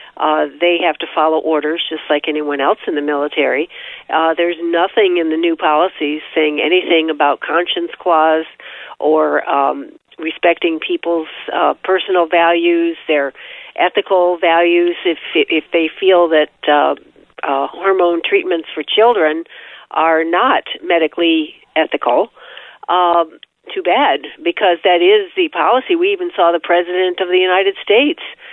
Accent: American